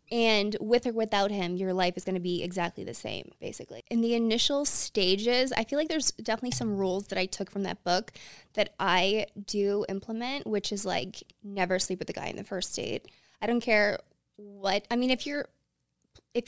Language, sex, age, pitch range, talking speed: English, female, 20-39, 195-230 Hz, 205 wpm